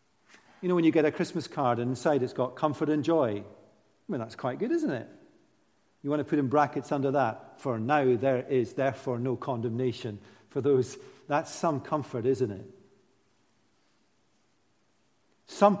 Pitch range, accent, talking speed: 110-150 Hz, British, 170 wpm